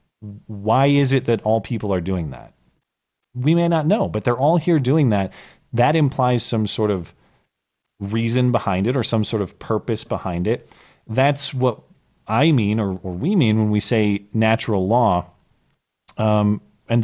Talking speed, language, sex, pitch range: 175 wpm, English, male, 95-125 Hz